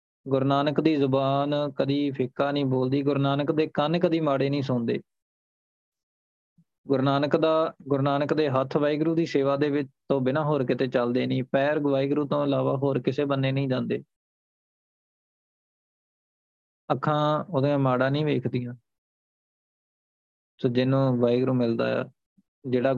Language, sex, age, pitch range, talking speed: Punjabi, male, 20-39, 125-140 Hz, 145 wpm